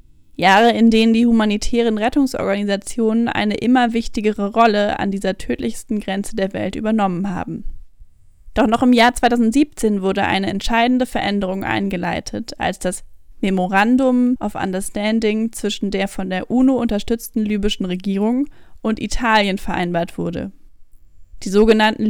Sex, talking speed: female, 130 wpm